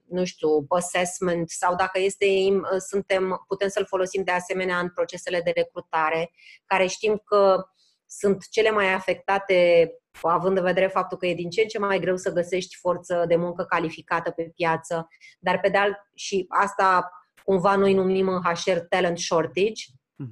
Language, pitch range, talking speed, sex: Romanian, 180-225 Hz, 160 wpm, female